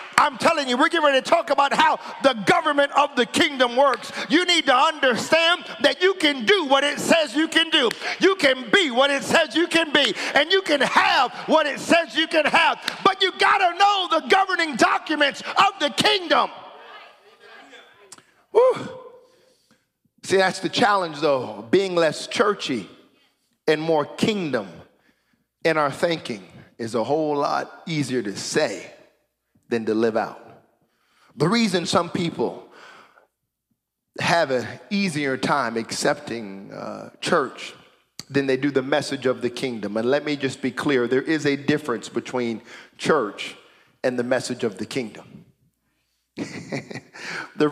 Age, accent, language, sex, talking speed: 40-59, American, English, male, 155 wpm